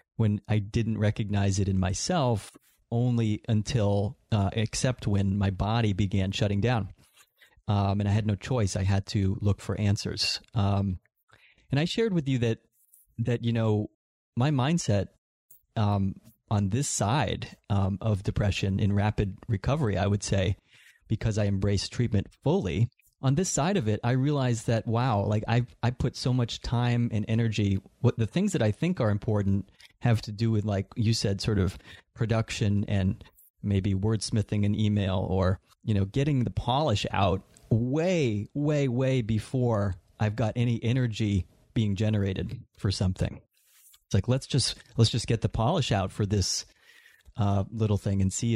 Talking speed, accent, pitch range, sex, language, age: 170 wpm, American, 100-120 Hz, male, English, 30-49